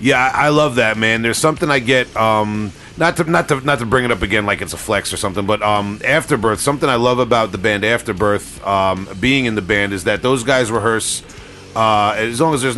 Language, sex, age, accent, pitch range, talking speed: English, male, 40-59, American, 100-120 Hz, 230 wpm